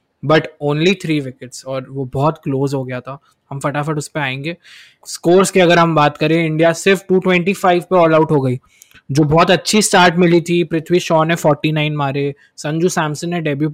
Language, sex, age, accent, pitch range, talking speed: Hindi, male, 20-39, native, 140-165 Hz, 195 wpm